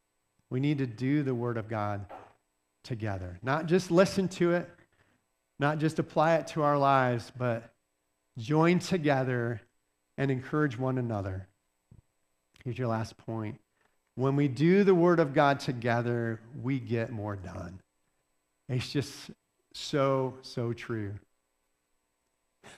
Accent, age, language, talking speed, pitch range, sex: American, 50-69, English, 130 wpm, 110-160 Hz, male